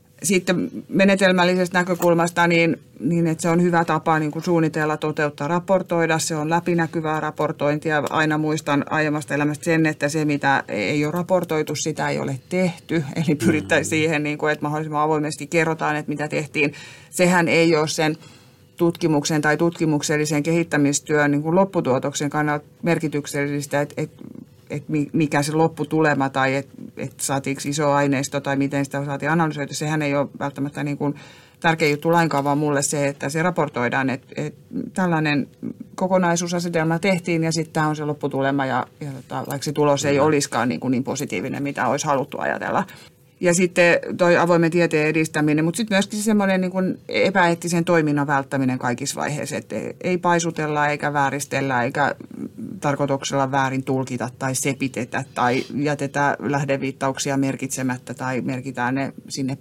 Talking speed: 145 wpm